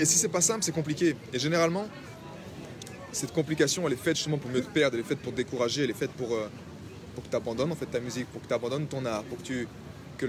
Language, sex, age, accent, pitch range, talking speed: French, male, 20-39, French, 125-165 Hz, 275 wpm